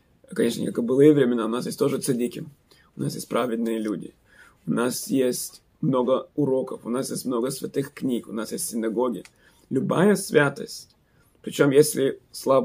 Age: 20-39